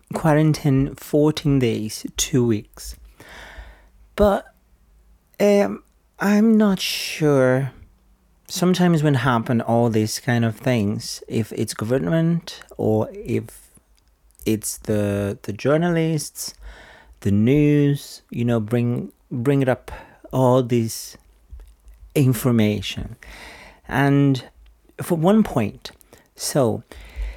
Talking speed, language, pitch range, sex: 95 wpm, English, 105-140 Hz, male